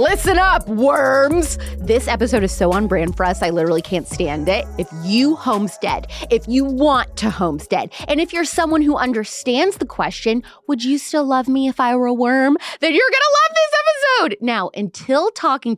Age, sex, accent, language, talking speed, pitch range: 20-39, female, American, English, 195 wpm, 185-260 Hz